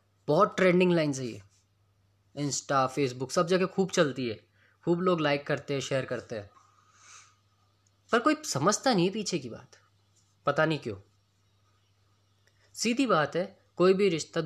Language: Hindi